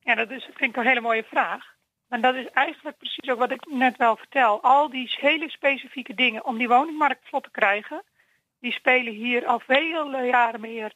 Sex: female